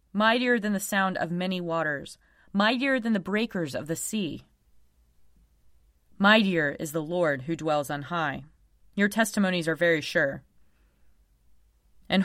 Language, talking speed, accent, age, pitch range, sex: English, 135 wpm, American, 30-49, 140-205 Hz, female